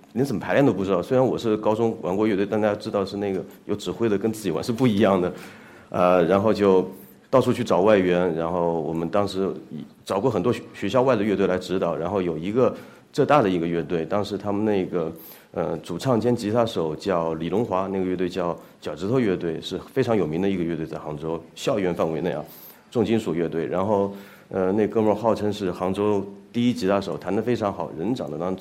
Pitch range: 90-110 Hz